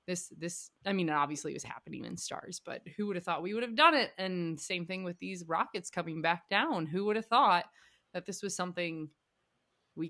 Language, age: English, 20-39